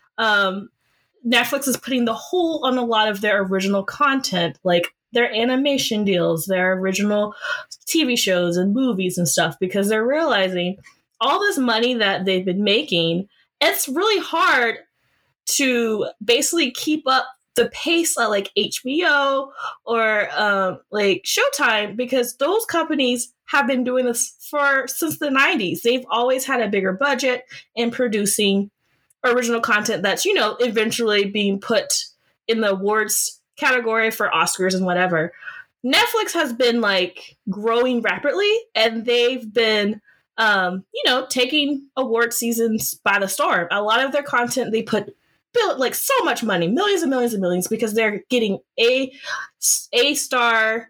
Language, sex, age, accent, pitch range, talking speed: English, female, 20-39, American, 205-270 Hz, 145 wpm